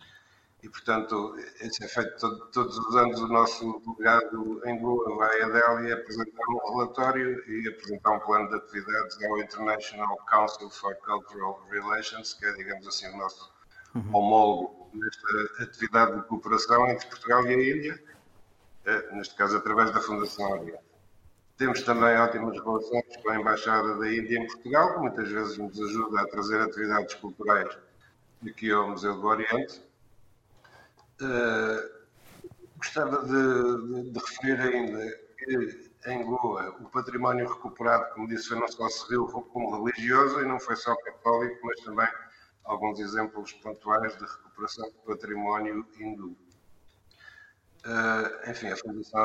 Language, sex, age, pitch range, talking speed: Portuguese, male, 50-69, 105-120 Hz, 145 wpm